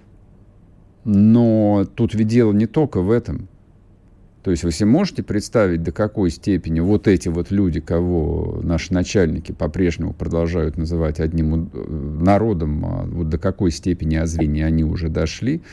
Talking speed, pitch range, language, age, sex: 140 wpm, 80-100 Hz, Russian, 50-69, male